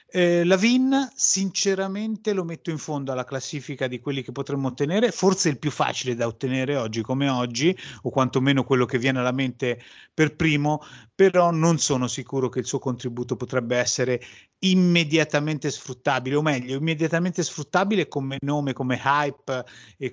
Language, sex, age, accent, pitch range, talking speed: Italian, male, 30-49, native, 125-150 Hz, 160 wpm